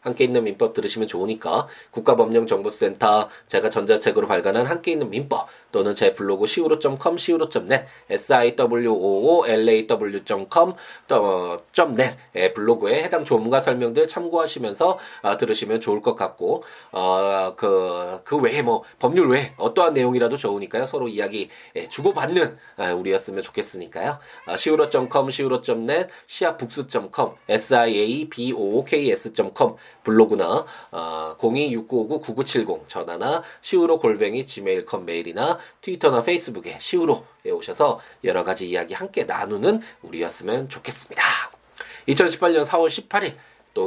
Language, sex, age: Korean, male, 20-39